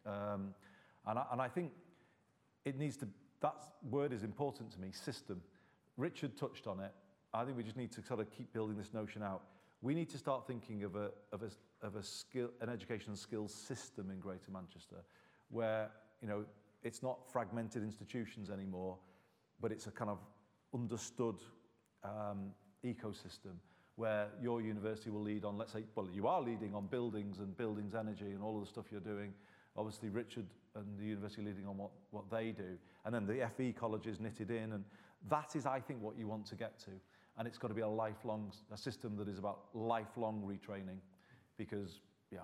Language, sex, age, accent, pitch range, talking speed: English, male, 40-59, British, 100-120 Hz, 190 wpm